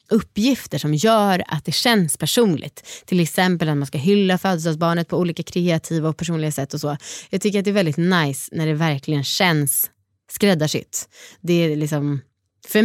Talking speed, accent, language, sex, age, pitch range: 175 wpm, native, Swedish, female, 20-39, 160-215 Hz